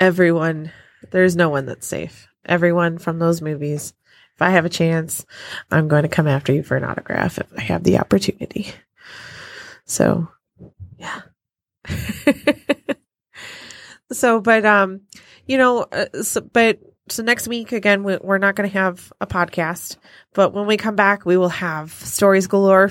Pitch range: 170-200 Hz